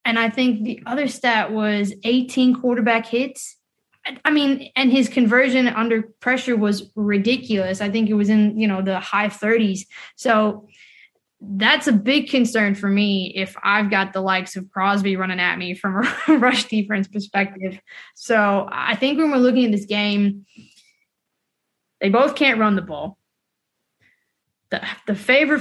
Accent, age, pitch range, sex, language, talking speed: American, 20-39, 200-250 Hz, female, English, 160 wpm